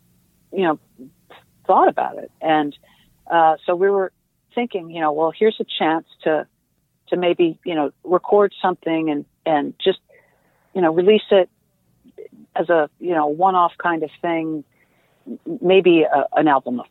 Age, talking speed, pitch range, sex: 50-69, 155 wpm, 155-195 Hz, female